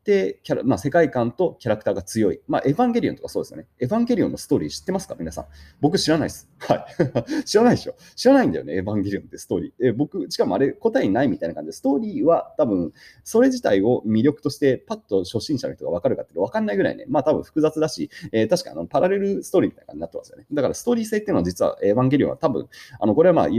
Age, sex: 30-49, male